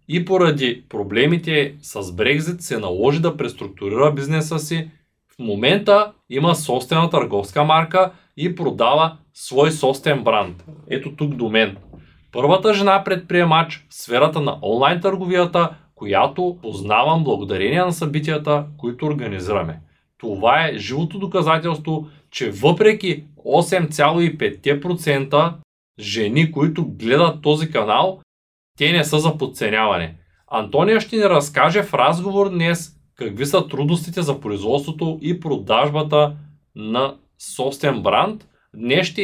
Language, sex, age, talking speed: Bulgarian, male, 20-39, 120 wpm